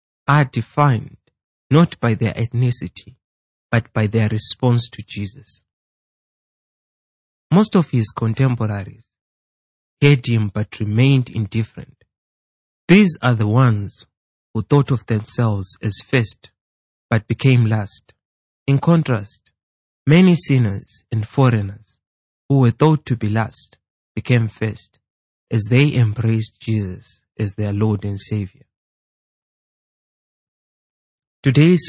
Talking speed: 110 wpm